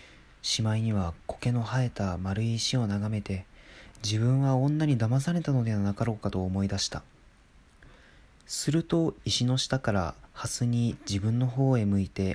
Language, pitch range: Japanese, 95-125 Hz